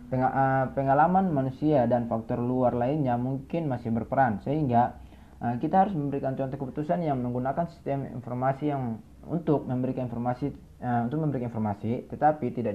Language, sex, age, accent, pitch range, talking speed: Indonesian, male, 20-39, native, 115-140 Hz, 130 wpm